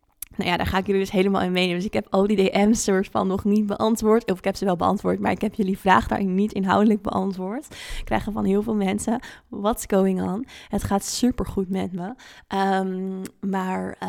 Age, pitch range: 20-39, 180-205 Hz